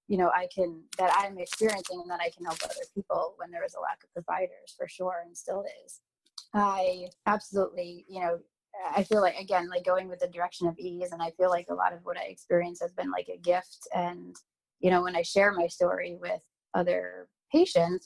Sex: female